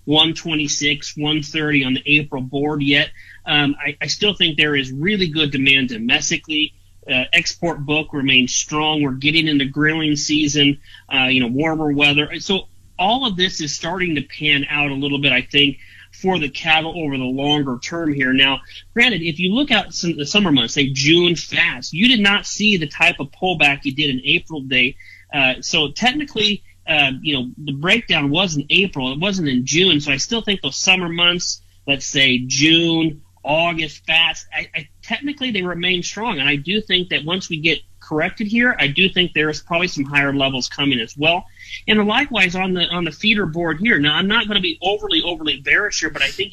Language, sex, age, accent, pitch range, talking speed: English, male, 30-49, American, 140-180 Hz, 205 wpm